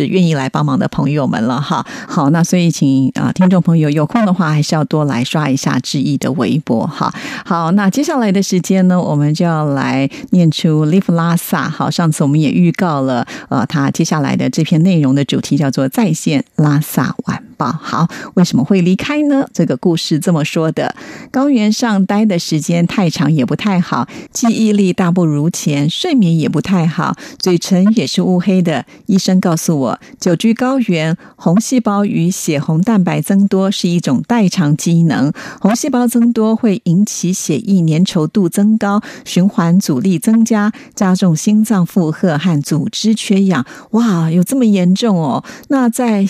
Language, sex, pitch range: Chinese, female, 160-215 Hz